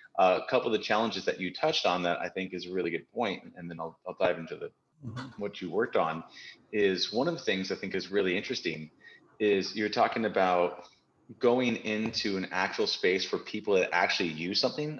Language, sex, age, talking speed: English, male, 30-49, 210 wpm